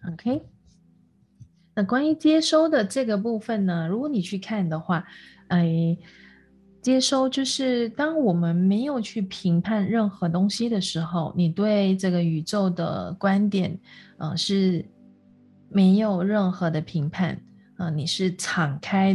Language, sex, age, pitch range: Chinese, female, 20-39, 175-220 Hz